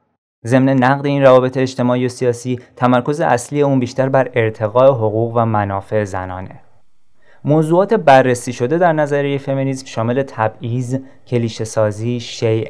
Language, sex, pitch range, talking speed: Persian, male, 110-135 Hz, 130 wpm